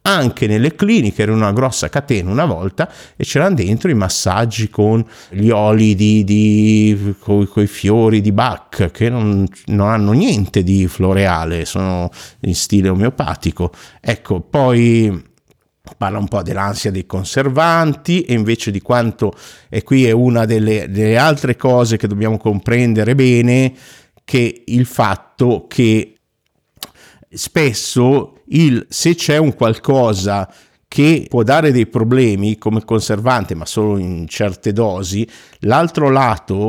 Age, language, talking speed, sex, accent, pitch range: 50-69, Italian, 130 wpm, male, native, 105-130 Hz